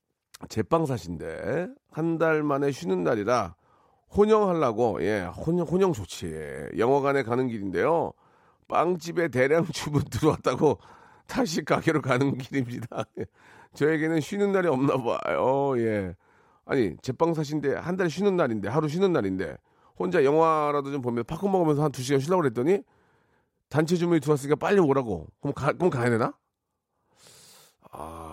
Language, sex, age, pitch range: Korean, male, 40-59, 130-185 Hz